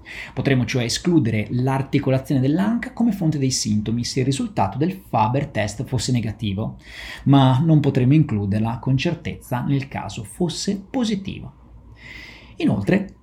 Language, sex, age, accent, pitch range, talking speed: Italian, male, 30-49, native, 110-165 Hz, 125 wpm